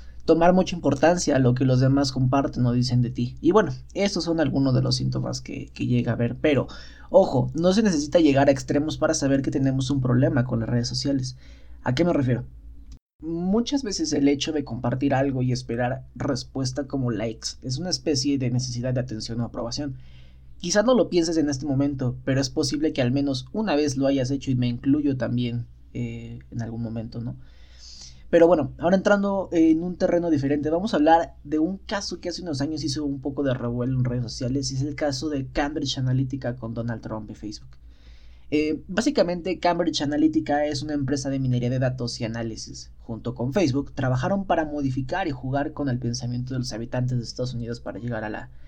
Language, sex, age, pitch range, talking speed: Spanish, male, 20-39, 120-150 Hz, 205 wpm